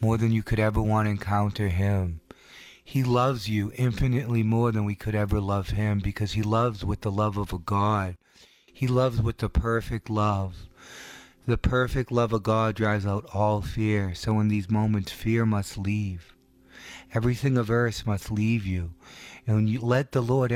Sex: male